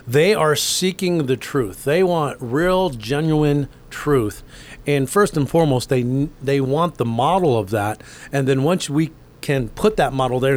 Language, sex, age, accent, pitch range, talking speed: English, male, 40-59, American, 120-150 Hz, 170 wpm